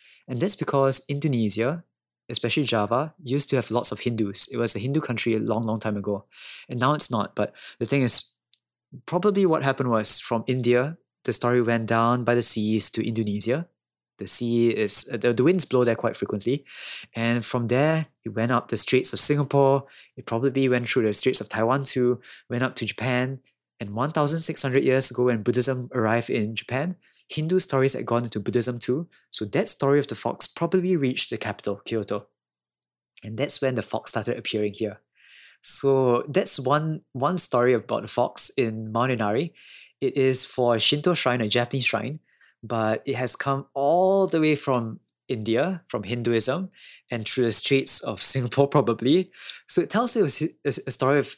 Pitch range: 115-140 Hz